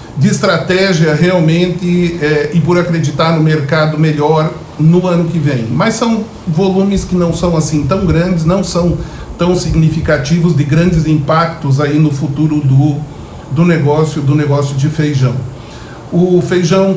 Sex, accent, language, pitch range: male, Brazilian, Portuguese, 150-185 Hz